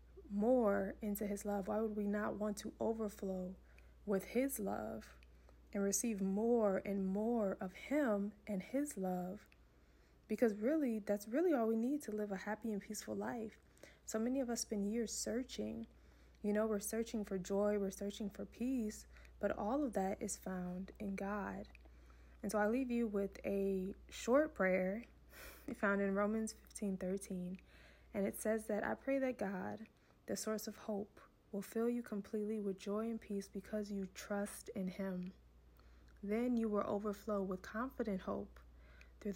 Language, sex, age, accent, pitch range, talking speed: English, female, 20-39, American, 190-220 Hz, 170 wpm